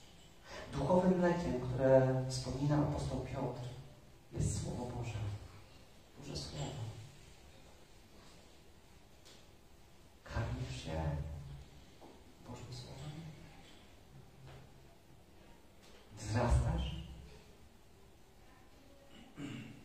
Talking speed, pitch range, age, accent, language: 50 wpm, 115-160 Hz, 40-59, native, Polish